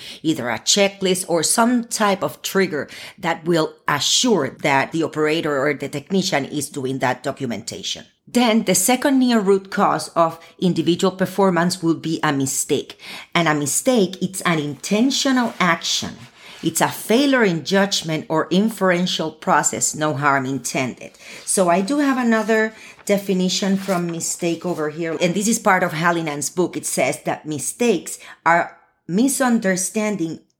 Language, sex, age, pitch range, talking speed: English, female, 40-59, 150-195 Hz, 145 wpm